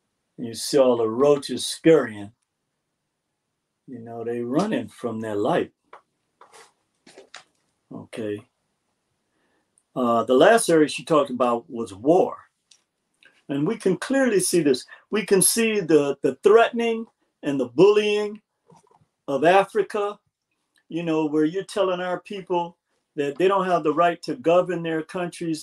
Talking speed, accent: 135 wpm, American